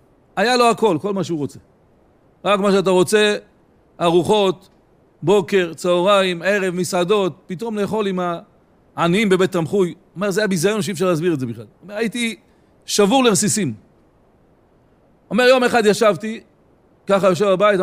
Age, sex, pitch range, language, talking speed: 40-59, male, 175-220 Hz, Hebrew, 155 wpm